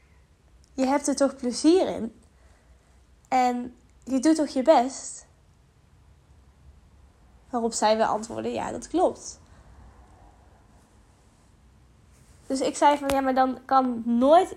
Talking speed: 115 wpm